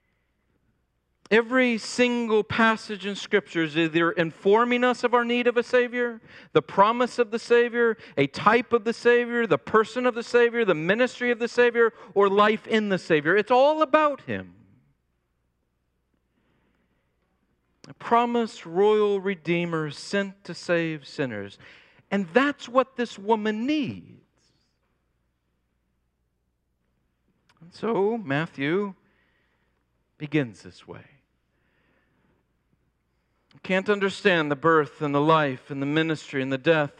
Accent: American